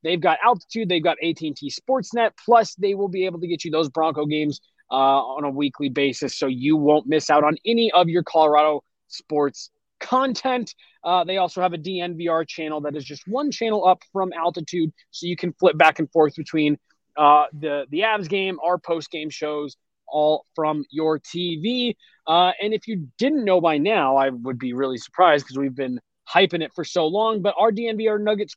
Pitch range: 155-205 Hz